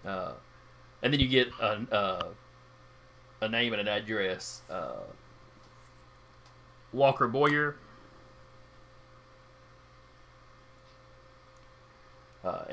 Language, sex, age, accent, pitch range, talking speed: English, male, 40-59, American, 120-150 Hz, 75 wpm